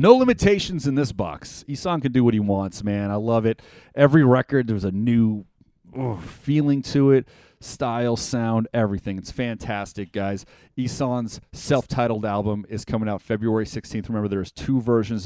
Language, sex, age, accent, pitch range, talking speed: English, male, 30-49, American, 100-130 Hz, 160 wpm